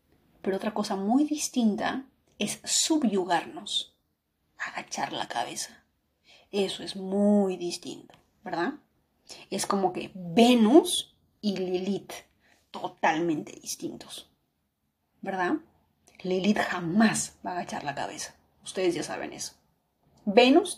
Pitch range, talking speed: 180-230 Hz, 105 wpm